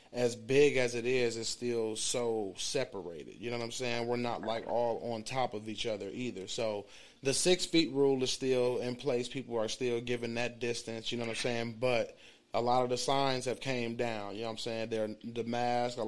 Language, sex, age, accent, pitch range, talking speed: English, male, 30-49, American, 115-130 Hz, 230 wpm